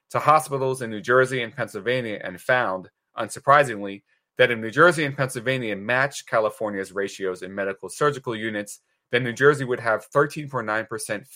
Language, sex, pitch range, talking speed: English, male, 105-140 Hz, 155 wpm